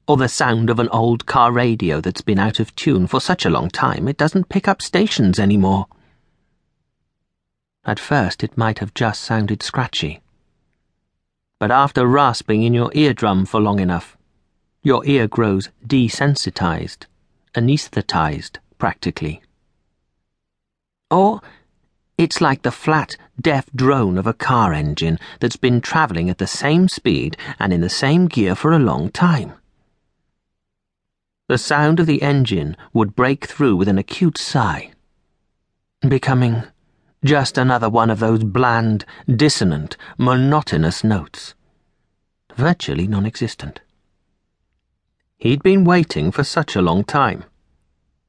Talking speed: 130 wpm